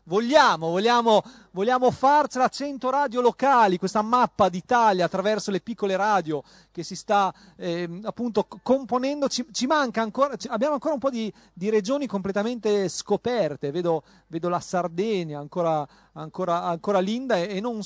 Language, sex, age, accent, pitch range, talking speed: Italian, male, 40-59, native, 185-235 Hz, 150 wpm